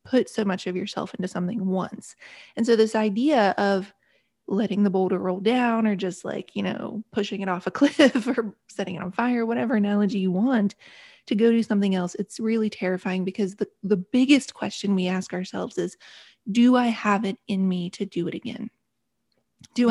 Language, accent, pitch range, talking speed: English, American, 195-235 Hz, 195 wpm